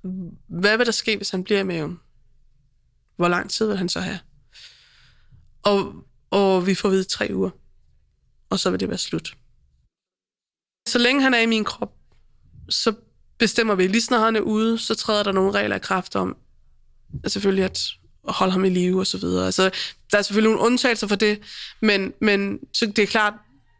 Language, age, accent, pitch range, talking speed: Danish, 20-39, native, 185-220 Hz, 190 wpm